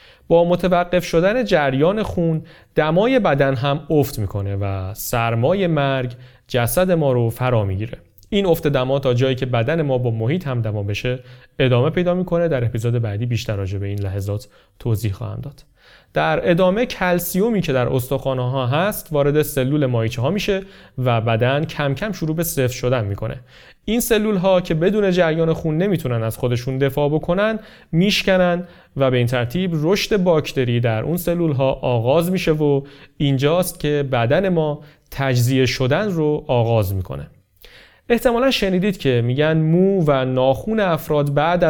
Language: Persian